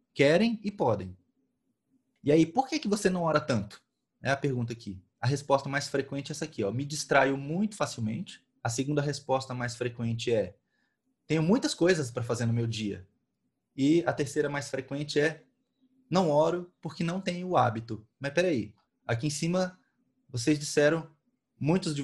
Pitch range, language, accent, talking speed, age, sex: 120-170 Hz, Portuguese, Brazilian, 175 wpm, 20-39, male